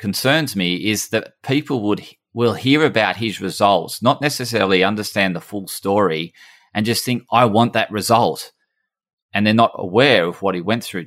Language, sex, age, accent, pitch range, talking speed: English, male, 30-49, Australian, 100-125 Hz, 180 wpm